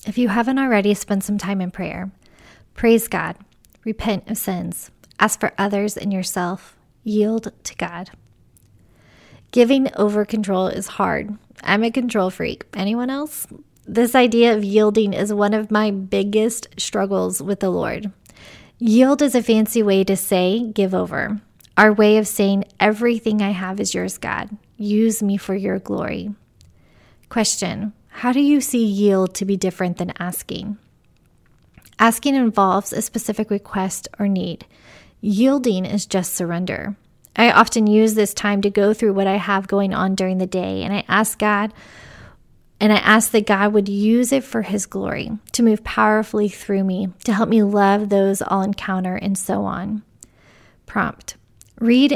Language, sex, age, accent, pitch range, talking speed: English, female, 20-39, American, 195-220 Hz, 160 wpm